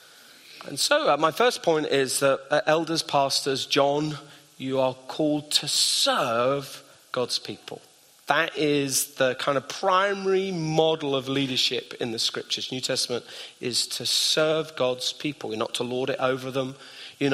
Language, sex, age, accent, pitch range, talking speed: English, male, 30-49, British, 115-145 Hz, 160 wpm